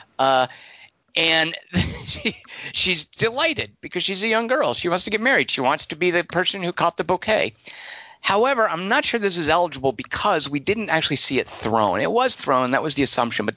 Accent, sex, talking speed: American, male, 205 wpm